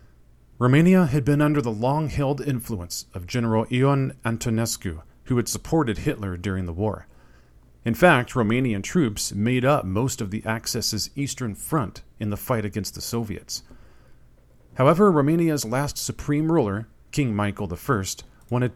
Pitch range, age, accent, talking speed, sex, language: 100-130 Hz, 40-59, American, 145 wpm, male, English